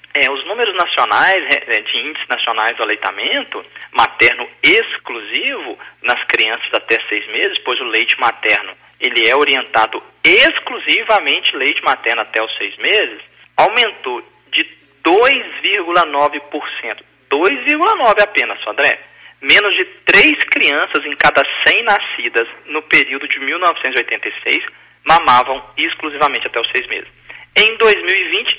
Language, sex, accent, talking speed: Portuguese, male, Brazilian, 115 wpm